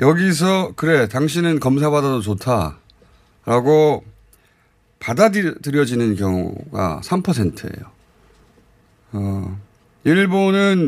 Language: Korean